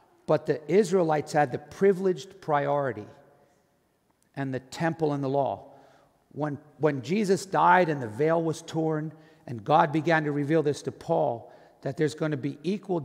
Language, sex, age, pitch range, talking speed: English, male, 50-69, 150-190 Hz, 165 wpm